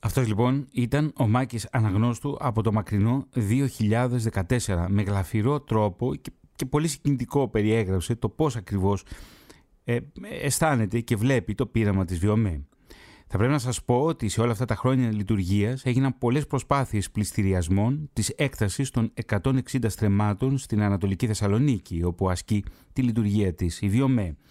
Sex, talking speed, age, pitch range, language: male, 145 wpm, 30-49, 95-125 Hz, Greek